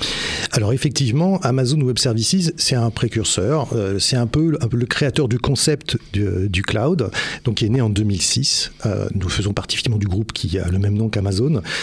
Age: 50-69